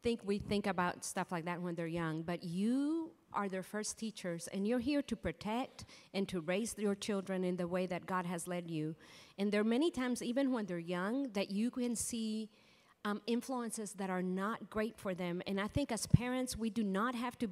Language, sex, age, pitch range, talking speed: English, female, 40-59, 180-230 Hz, 225 wpm